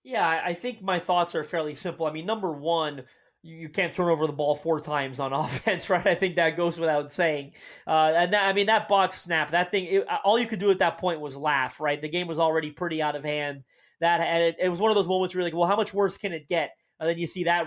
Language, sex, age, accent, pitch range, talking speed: English, male, 30-49, American, 155-185 Hz, 280 wpm